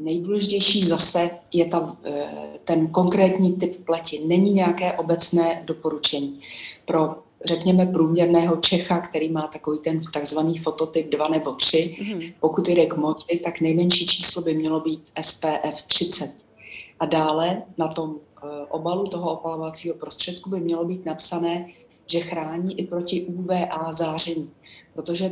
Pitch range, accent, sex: 155-175 Hz, native, female